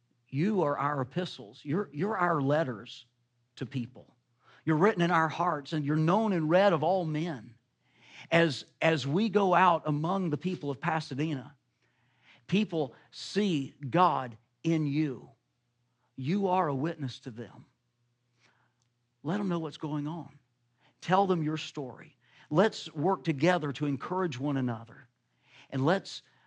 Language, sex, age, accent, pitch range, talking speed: English, male, 50-69, American, 120-155 Hz, 145 wpm